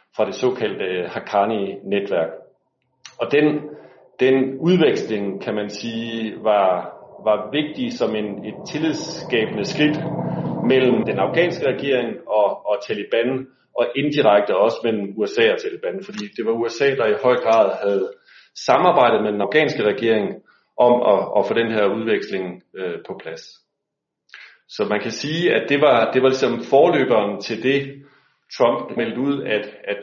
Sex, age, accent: male, 40-59, native